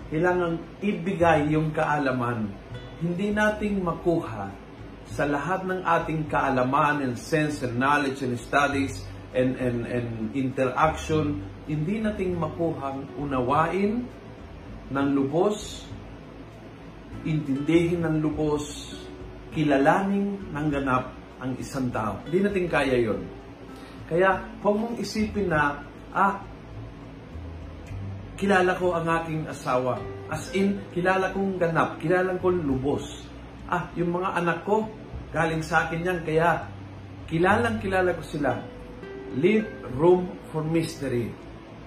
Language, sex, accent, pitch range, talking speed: Filipino, male, native, 125-175 Hz, 110 wpm